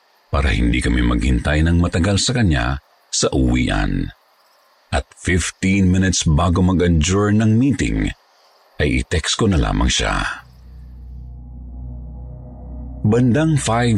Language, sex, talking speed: Filipino, male, 105 wpm